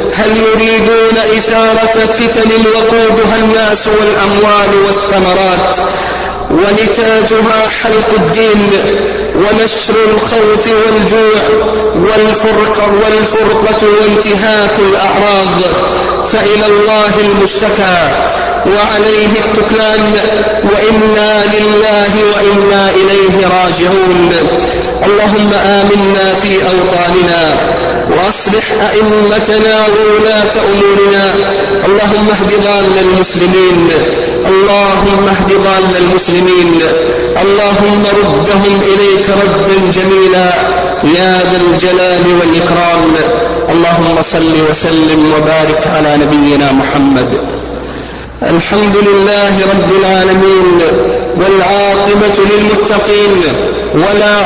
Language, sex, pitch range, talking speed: Arabic, male, 185-215 Hz, 75 wpm